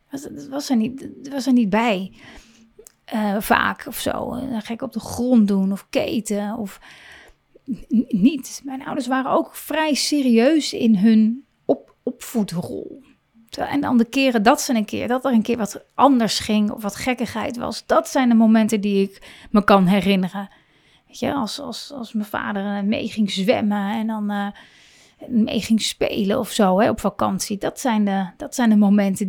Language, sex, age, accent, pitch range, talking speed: Dutch, female, 30-49, Dutch, 210-255 Hz, 180 wpm